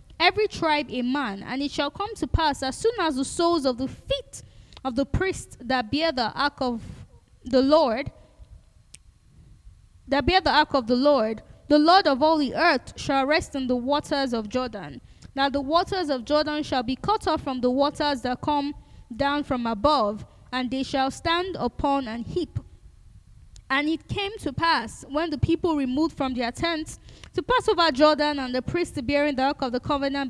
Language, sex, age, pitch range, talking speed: English, female, 20-39, 255-310 Hz, 190 wpm